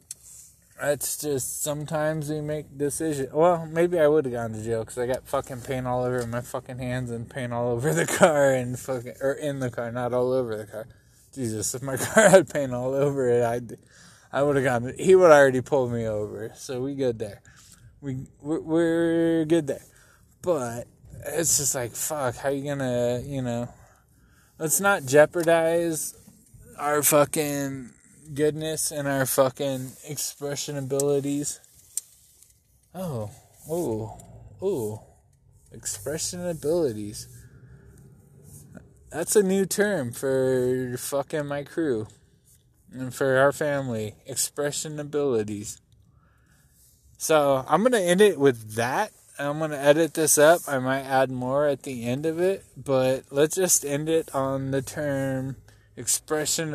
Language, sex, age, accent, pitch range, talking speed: English, male, 20-39, American, 125-150 Hz, 155 wpm